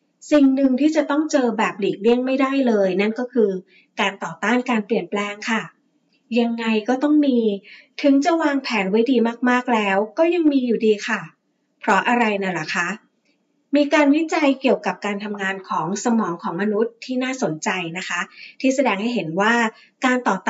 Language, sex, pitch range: Thai, female, 205-255 Hz